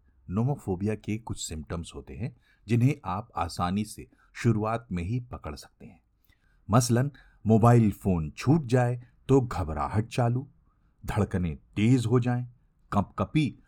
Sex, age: male, 50-69